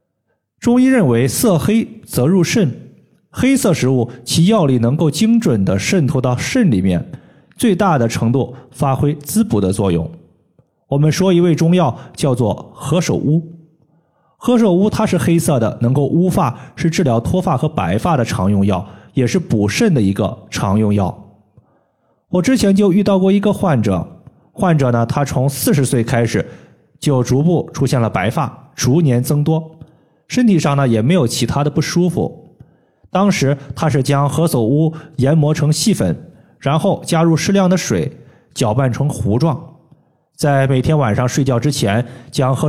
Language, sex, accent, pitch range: Chinese, male, native, 125-170 Hz